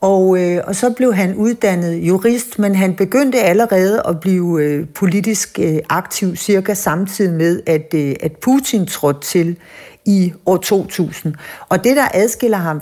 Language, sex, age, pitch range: Danish, female, 60-79, 170-210 Hz